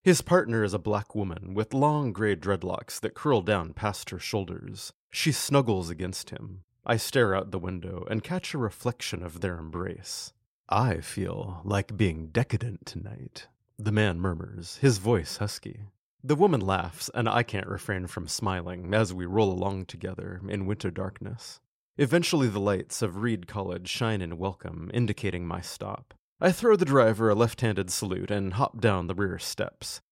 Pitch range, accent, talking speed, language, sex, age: 95-130 Hz, American, 170 wpm, English, male, 30-49